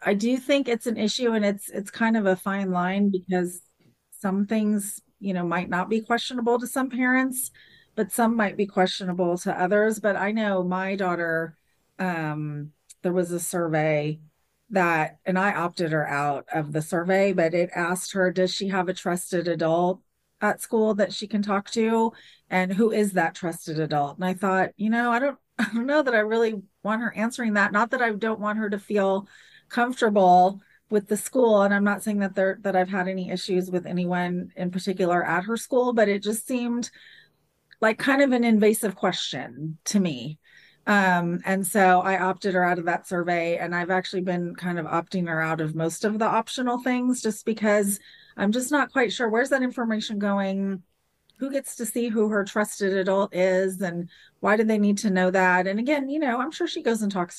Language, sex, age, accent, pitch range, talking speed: English, female, 30-49, American, 180-225 Hz, 205 wpm